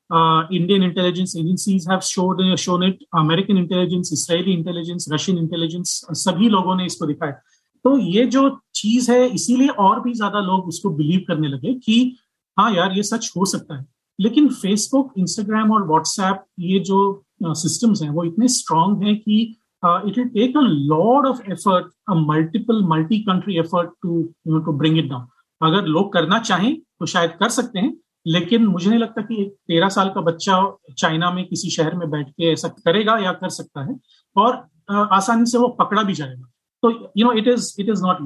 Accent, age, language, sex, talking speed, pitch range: native, 40-59, Hindi, male, 180 wpm, 165-220 Hz